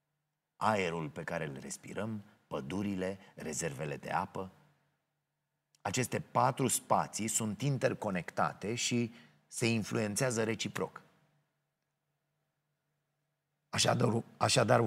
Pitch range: 100-125 Hz